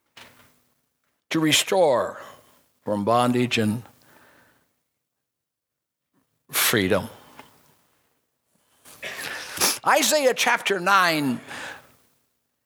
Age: 60-79